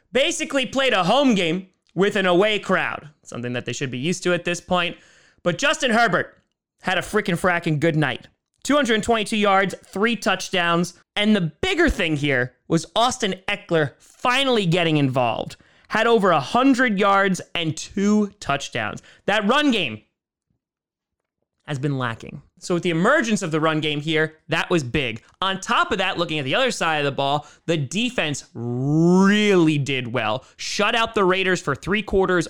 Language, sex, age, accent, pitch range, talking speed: English, male, 30-49, American, 150-205 Hz, 170 wpm